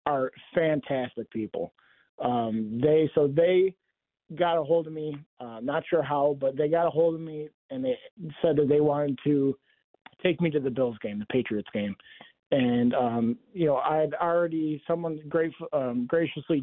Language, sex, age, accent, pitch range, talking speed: English, male, 30-49, American, 130-160 Hz, 175 wpm